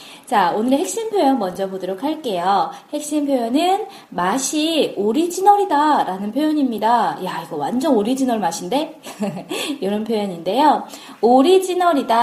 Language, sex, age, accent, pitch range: Korean, female, 20-39, native, 200-305 Hz